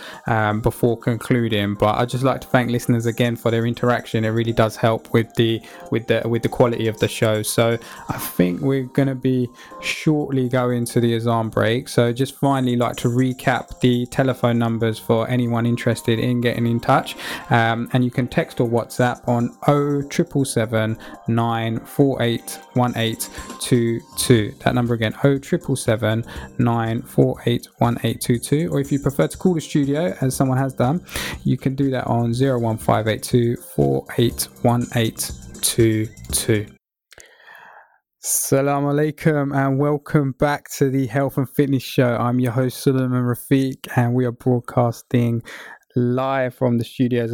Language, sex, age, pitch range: English, male, 20-39, 115-130 Hz